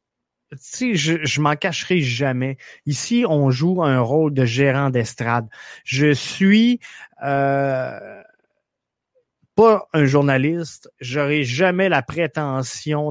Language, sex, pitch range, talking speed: French, male, 140-175 Hz, 120 wpm